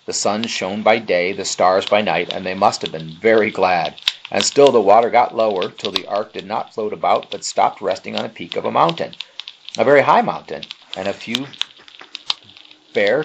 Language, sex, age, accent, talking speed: English, male, 40-59, American, 210 wpm